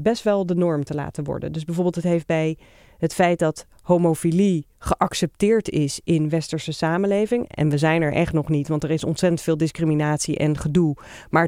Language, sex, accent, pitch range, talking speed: Dutch, female, Dutch, 160-200 Hz, 195 wpm